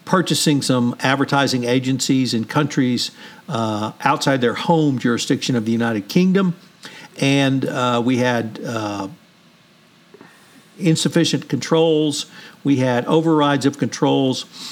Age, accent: 50-69, American